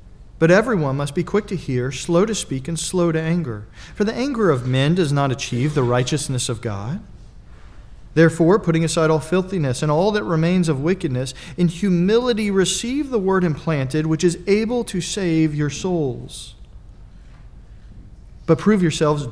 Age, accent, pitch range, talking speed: 40-59, American, 135-175 Hz, 165 wpm